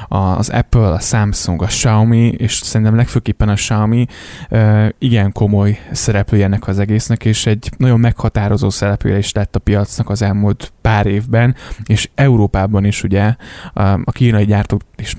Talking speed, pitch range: 150 wpm, 100-115 Hz